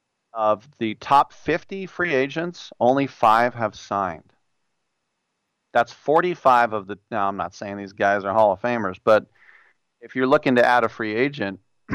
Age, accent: 40-59, American